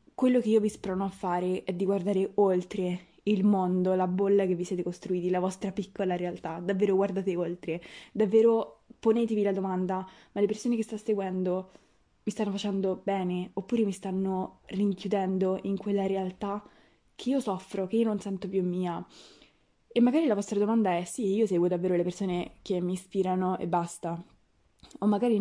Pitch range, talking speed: 185-215 Hz, 175 wpm